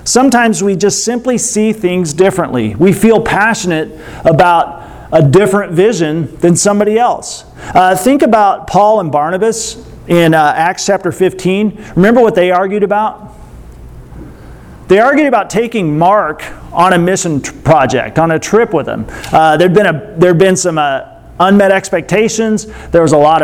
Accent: American